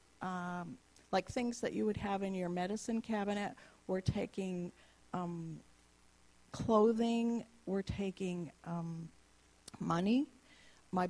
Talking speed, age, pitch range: 110 wpm, 50-69, 180-230 Hz